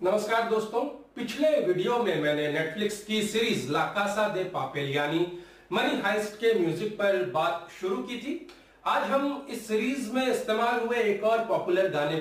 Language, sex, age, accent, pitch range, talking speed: Hindi, male, 40-59, native, 185-240 Hz, 155 wpm